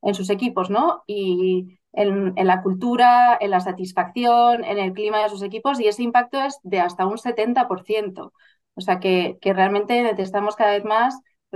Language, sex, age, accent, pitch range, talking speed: Spanish, female, 30-49, Spanish, 185-225 Hz, 185 wpm